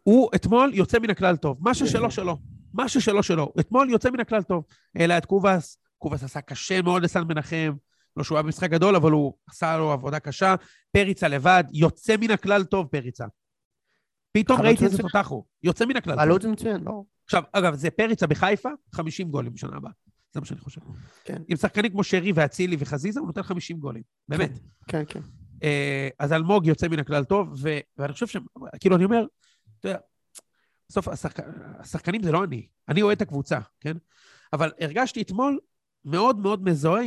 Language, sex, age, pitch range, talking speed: Hebrew, male, 40-59, 150-210 Hz, 120 wpm